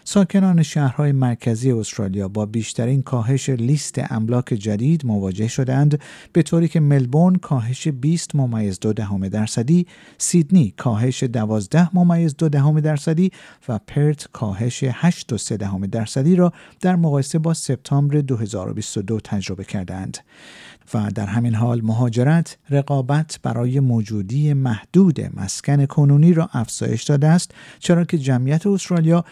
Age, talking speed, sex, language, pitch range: 50-69, 130 wpm, male, Persian, 115-160 Hz